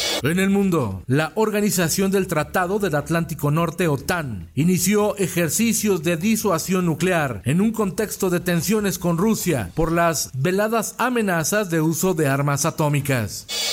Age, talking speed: 40-59, 140 wpm